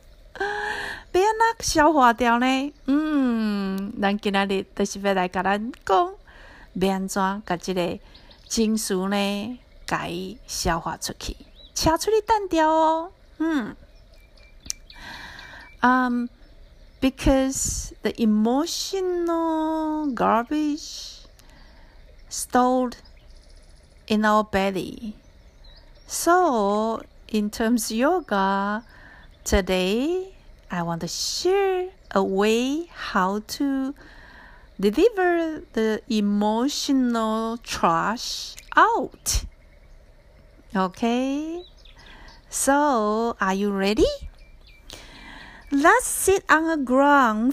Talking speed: 50 wpm